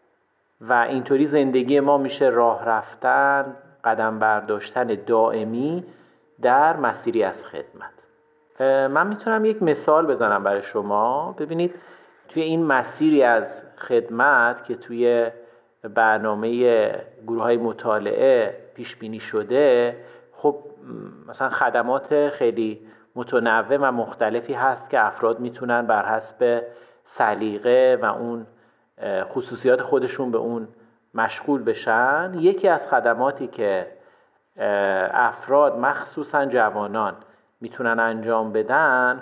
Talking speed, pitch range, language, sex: 105 wpm, 115-160 Hz, Persian, male